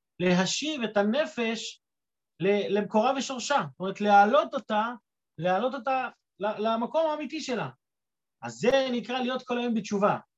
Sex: male